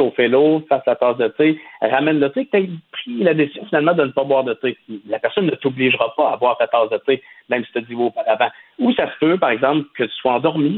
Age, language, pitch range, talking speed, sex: 50-69, French, 135-190 Hz, 285 wpm, male